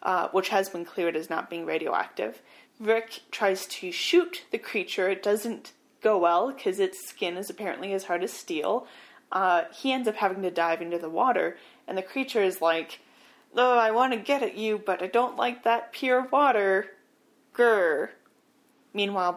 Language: English